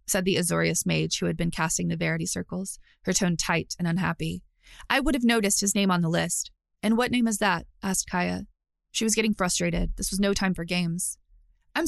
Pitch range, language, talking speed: 170-215 Hz, English, 215 wpm